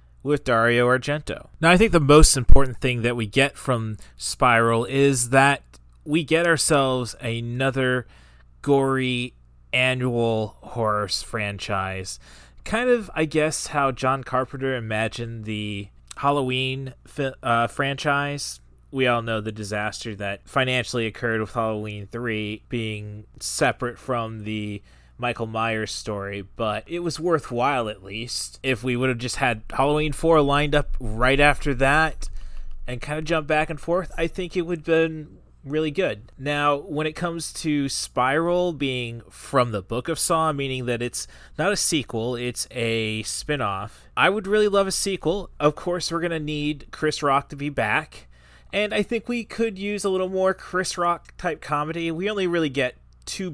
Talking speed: 160 wpm